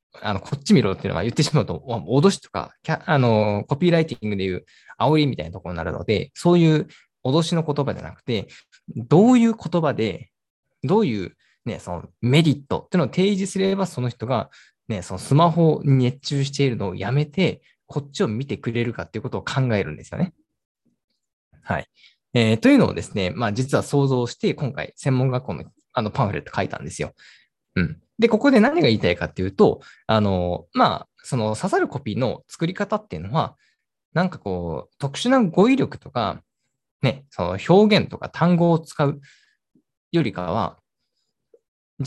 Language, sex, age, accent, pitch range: Japanese, male, 20-39, native, 105-175 Hz